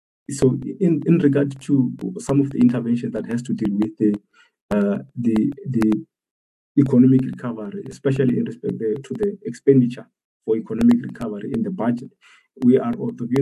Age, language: 50-69, English